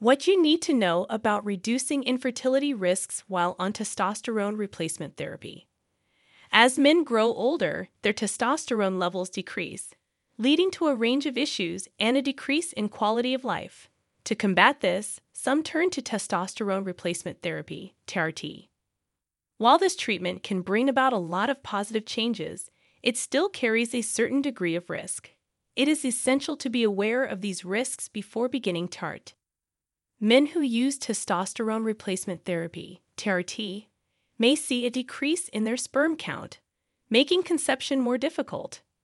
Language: English